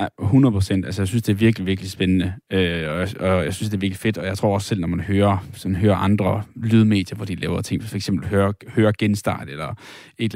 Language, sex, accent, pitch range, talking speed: Danish, male, native, 100-115 Hz, 240 wpm